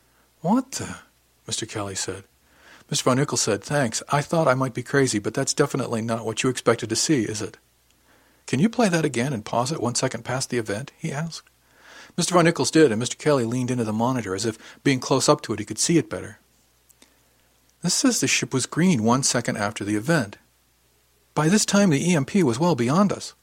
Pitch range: 110-140 Hz